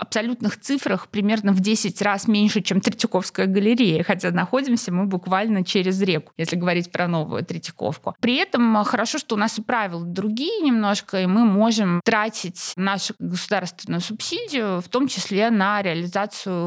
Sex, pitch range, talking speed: female, 175-210 Hz, 155 wpm